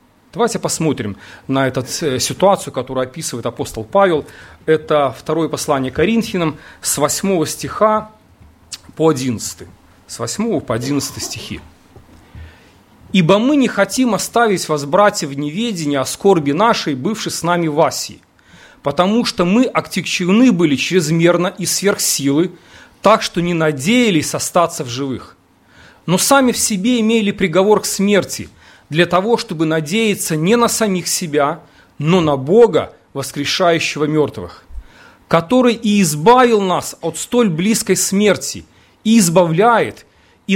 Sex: male